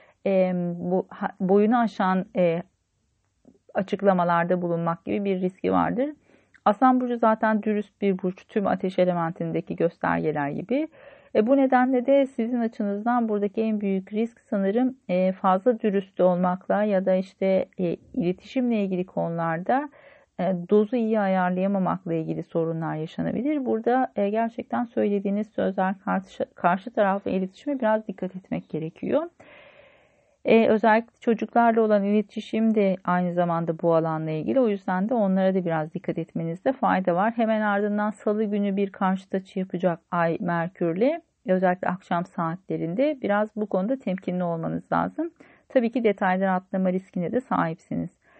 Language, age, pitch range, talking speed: Turkish, 40-59, 185-235 Hz, 135 wpm